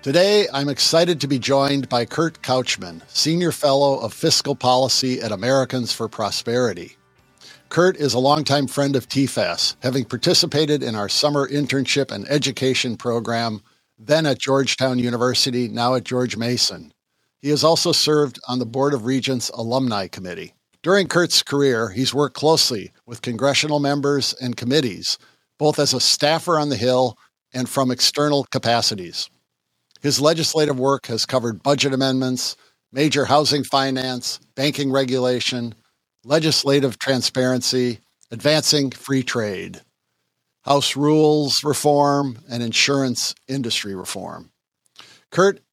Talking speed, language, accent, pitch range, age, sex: 130 wpm, English, American, 120-145 Hz, 50-69, male